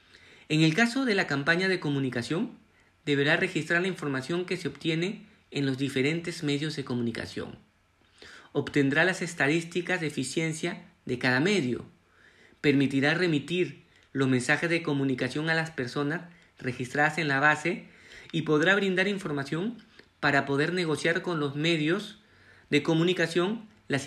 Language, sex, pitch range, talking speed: Spanish, male, 135-175 Hz, 135 wpm